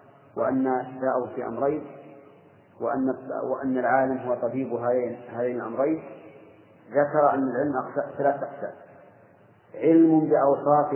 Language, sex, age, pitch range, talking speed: Arabic, male, 40-59, 130-150 Hz, 105 wpm